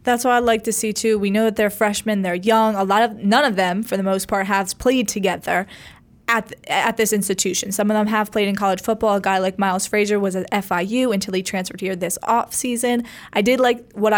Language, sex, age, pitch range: English, female, 20-39, 195-220 Hz